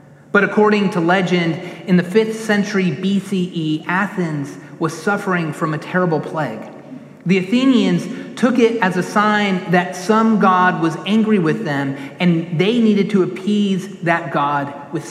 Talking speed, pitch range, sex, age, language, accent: 150 wpm, 170-210 Hz, male, 30-49, English, American